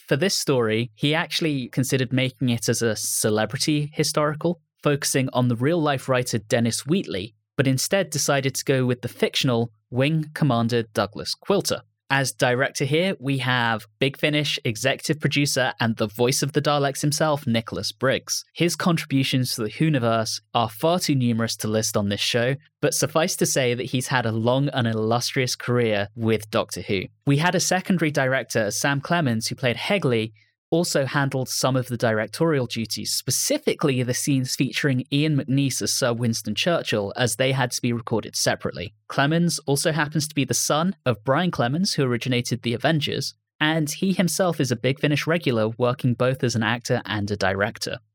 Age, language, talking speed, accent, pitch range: 10-29, English, 180 wpm, British, 115-150 Hz